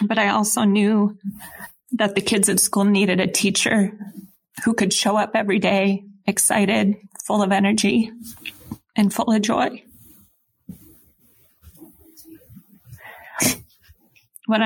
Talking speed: 110 wpm